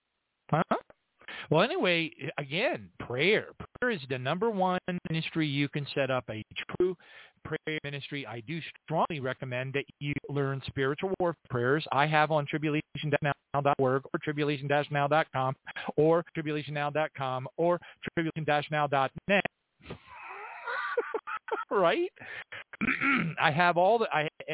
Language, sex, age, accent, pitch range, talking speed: English, male, 40-59, American, 140-180 Hz, 125 wpm